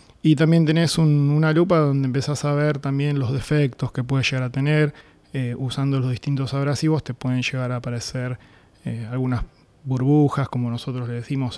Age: 20-39